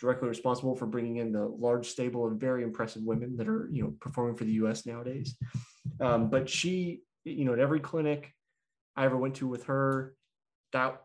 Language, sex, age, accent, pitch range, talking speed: English, male, 20-39, American, 120-150 Hz, 195 wpm